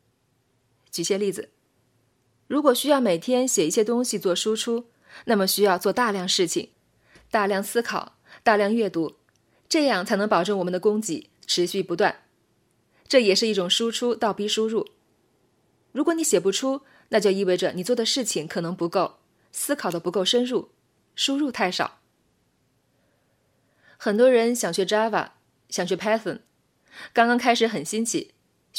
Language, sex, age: Chinese, female, 20-39